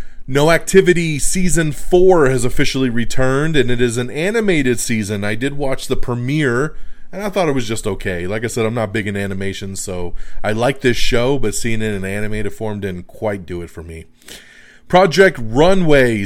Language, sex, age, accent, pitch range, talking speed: English, male, 30-49, American, 105-145 Hz, 195 wpm